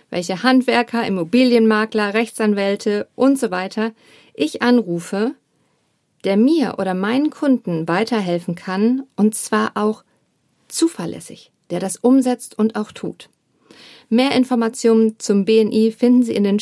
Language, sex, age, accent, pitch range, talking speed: German, female, 50-69, German, 200-250 Hz, 125 wpm